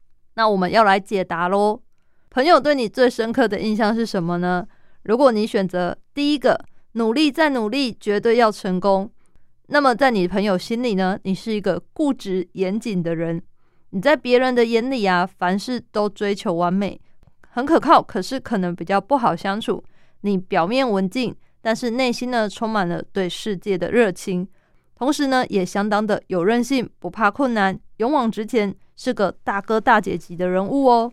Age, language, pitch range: 20-39, Chinese, 190-240 Hz